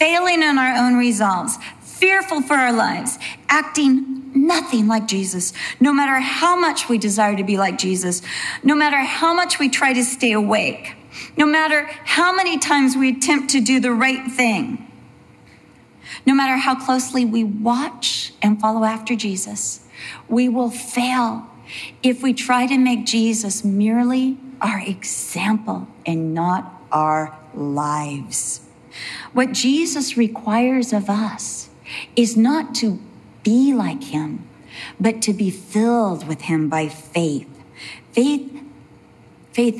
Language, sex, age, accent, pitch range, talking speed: English, female, 40-59, American, 205-260 Hz, 135 wpm